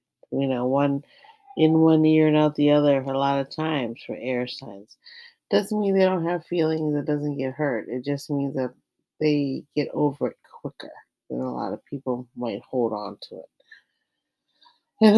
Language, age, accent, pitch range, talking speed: English, 40-59, American, 130-175 Hz, 185 wpm